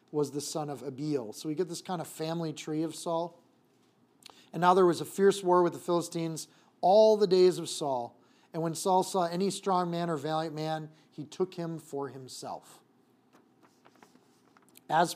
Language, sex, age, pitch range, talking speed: English, male, 40-59, 150-175 Hz, 180 wpm